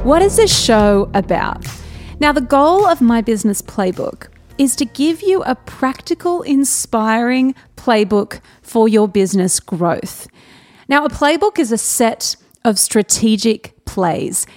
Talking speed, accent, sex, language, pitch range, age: 135 wpm, Australian, female, English, 205-275 Hz, 30-49